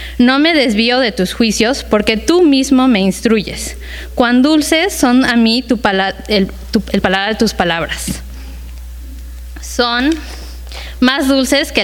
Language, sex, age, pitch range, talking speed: English, female, 20-39, 195-260 Hz, 145 wpm